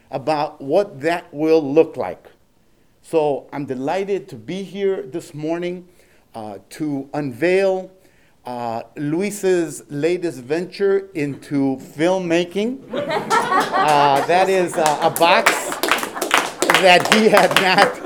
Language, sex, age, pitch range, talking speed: English, male, 50-69, 145-180 Hz, 110 wpm